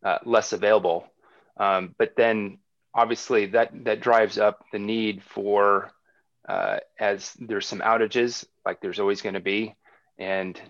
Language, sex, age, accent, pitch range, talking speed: English, male, 30-49, American, 110-140 Hz, 145 wpm